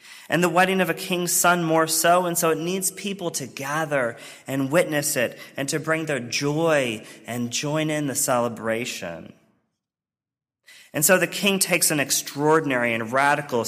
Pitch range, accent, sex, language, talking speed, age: 115-165 Hz, American, male, English, 165 wpm, 30-49